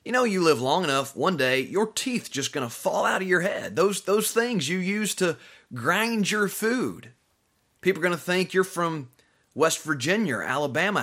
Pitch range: 145-200 Hz